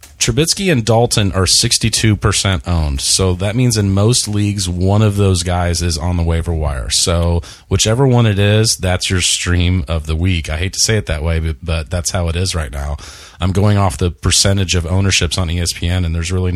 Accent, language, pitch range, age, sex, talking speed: American, English, 90-110 Hz, 30-49, male, 210 wpm